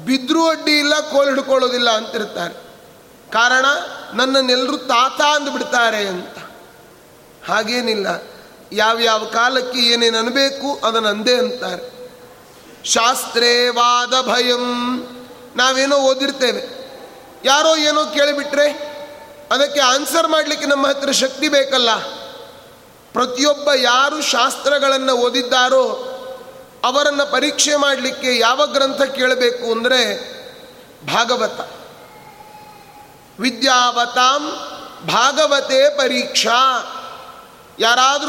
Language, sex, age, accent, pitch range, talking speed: Kannada, male, 30-49, native, 245-285 Hz, 65 wpm